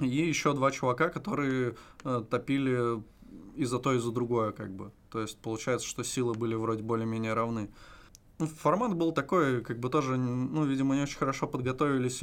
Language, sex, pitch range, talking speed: Russian, male, 115-130 Hz, 170 wpm